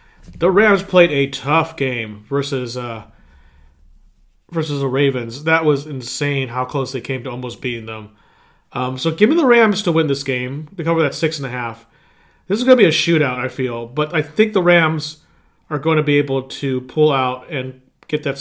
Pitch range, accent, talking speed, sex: 130-165 Hz, American, 210 wpm, male